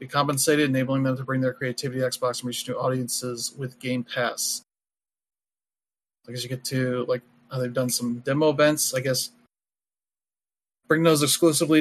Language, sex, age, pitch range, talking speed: English, male, 30-49, 125-150 Hz, 180 wpm